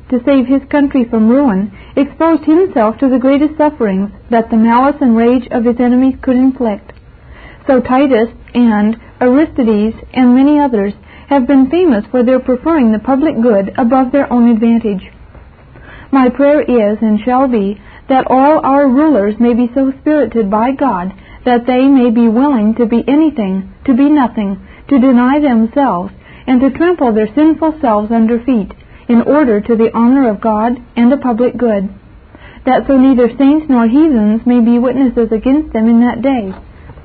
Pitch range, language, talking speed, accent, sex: 230-275 Hz, English, 170 wpm, American, female